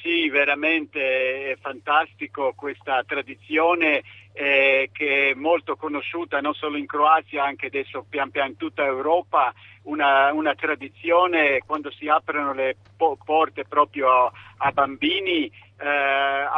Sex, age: male, 50-69